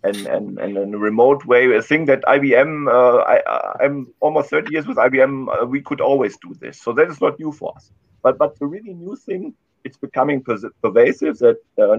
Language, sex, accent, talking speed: English, male, German, 220 wpm